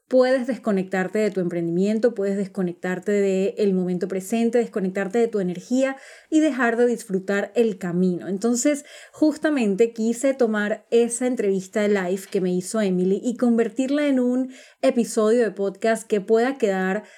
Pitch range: 200-245 Hz